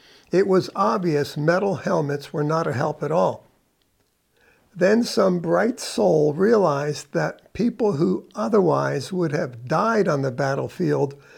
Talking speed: 135 wpm